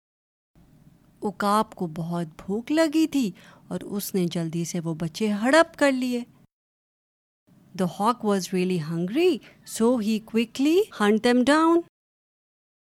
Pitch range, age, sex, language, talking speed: 190-265 Hz, 30-49, female, Urdu, 110 wpm